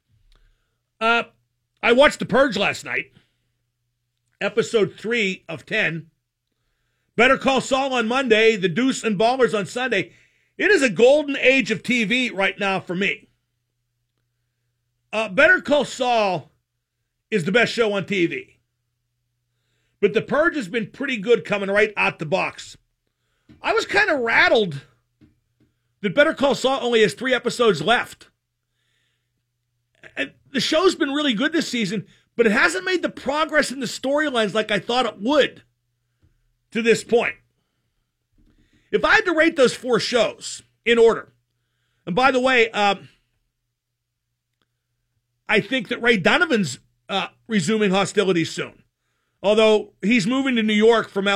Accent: American